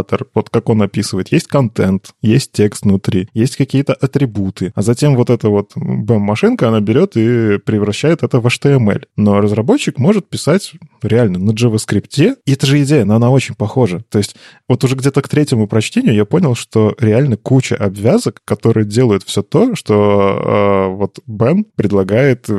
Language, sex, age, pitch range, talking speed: Russian, male, 20-39, 105-130 Hz, 165 wpm